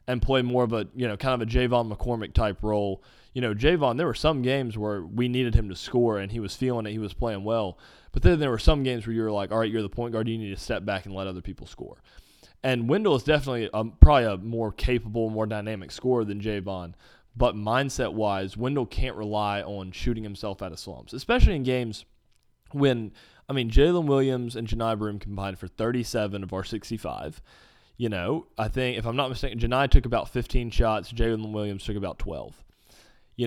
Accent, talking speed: American, 220 wpm